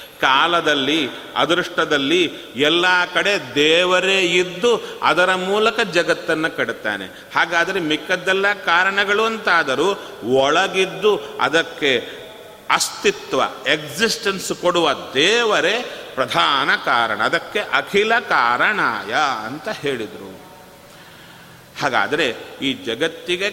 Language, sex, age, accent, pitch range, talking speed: Kannada, male, 40-59, native, 160-210 Hz, 75 wpm